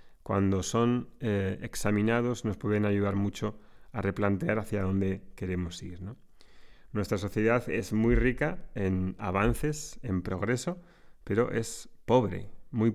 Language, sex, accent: Spanish, male, Spanish